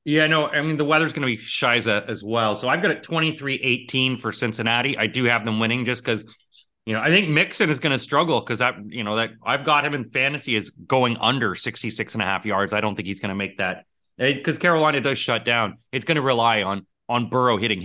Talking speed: 250 wpm